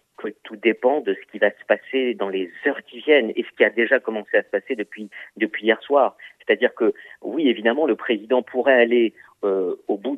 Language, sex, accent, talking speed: French, male, French, 220 wpm